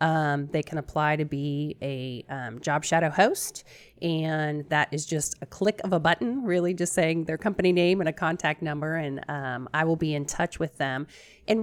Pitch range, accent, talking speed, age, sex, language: 150-180 Hz, American, 205 wpm, 30-49, female, English